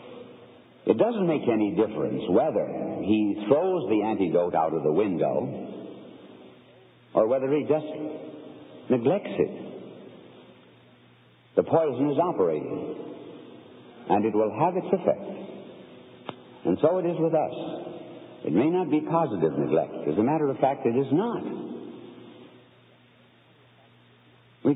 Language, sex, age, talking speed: English, male, 60-79, 125 wpm